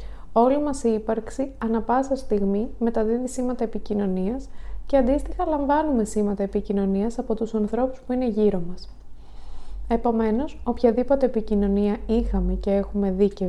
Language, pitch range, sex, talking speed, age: Greek, 205-255 Hz, female, 135 wpm, 20-39